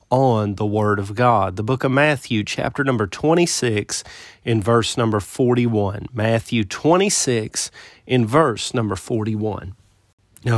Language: English